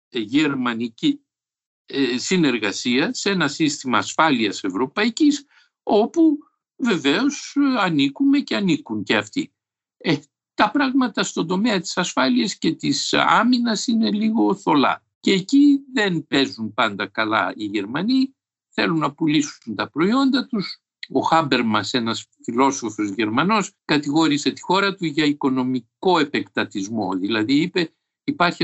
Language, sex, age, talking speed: Greek, male, 60-79, 115 wpm